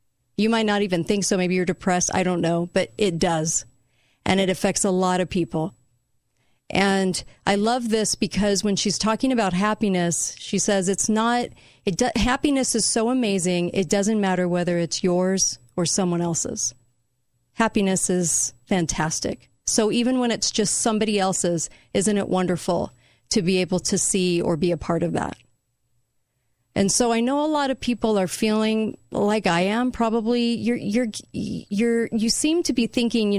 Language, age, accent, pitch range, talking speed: English, 40-59, American, 170-215 Hz, 175 wpm